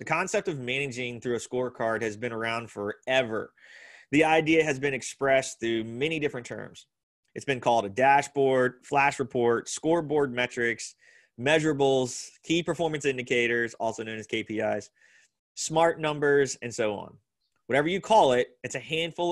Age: 20-39